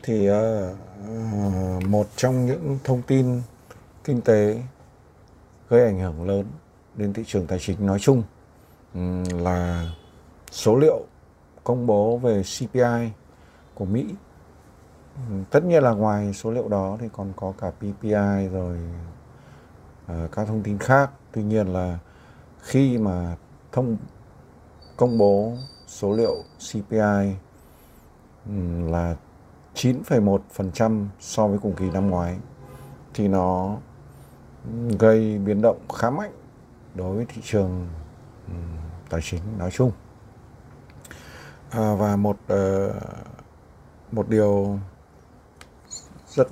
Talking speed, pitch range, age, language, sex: 110 wpm, 90-115 Hz, 60-79, Vietnamese, male